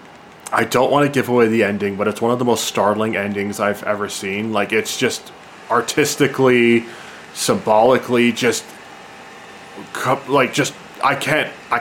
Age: 20-39